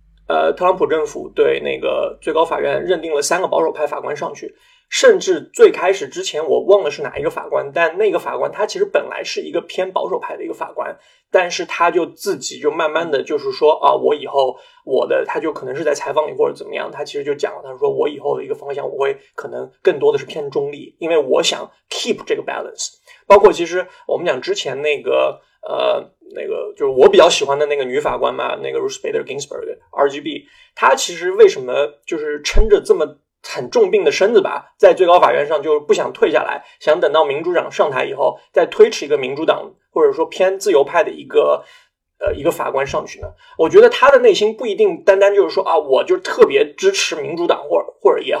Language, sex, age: Chinese, male, 20-39